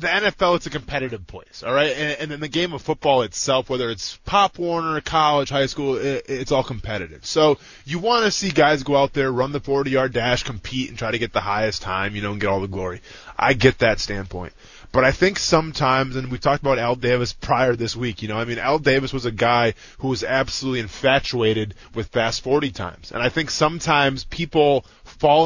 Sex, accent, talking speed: male, American, 225 wpm